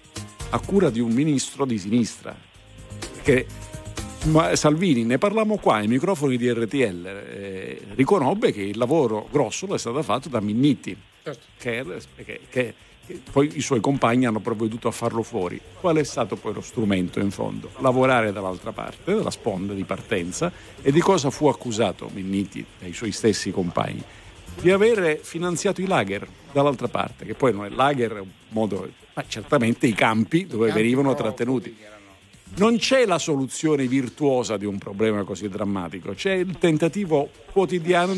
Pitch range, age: 105-165 Hz, 50-69